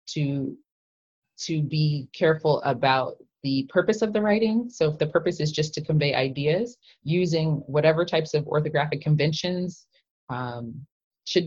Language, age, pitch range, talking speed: English, 20-39, 125-155 Hz, 140 wpm